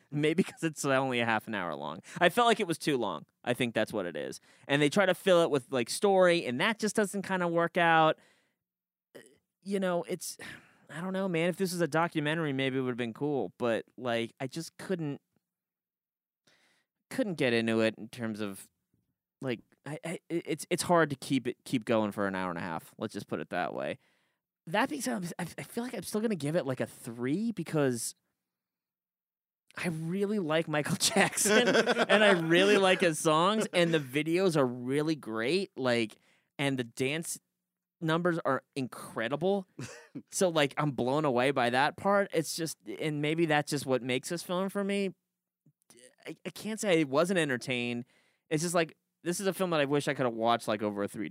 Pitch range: 130-185 Hz